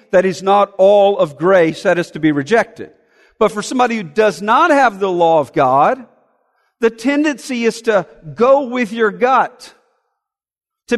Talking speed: 170 wpm